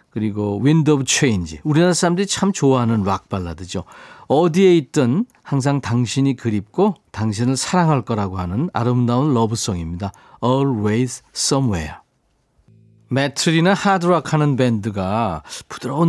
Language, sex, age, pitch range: Korean, male, 40-59, 110-155 Hz